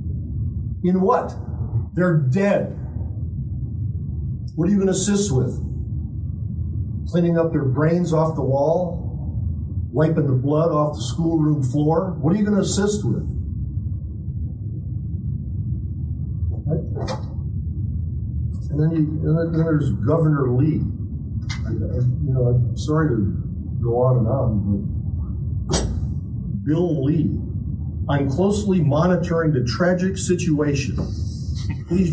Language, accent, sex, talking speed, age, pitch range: English, American, male, 110 wpm, 50-69, 105-155 Hz